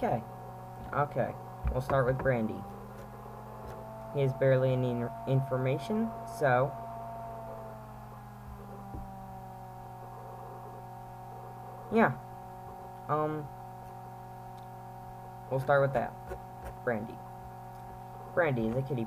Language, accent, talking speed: English, American, 75 wpm